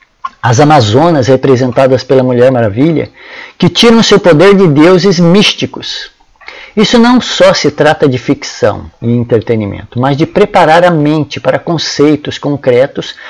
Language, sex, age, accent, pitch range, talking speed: Portuguese, male, 60-79, Brazilian, 135-190 Hz, 135 wpm